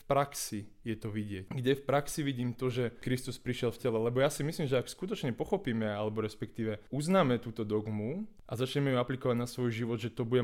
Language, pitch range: Slovak, 110-130 Hz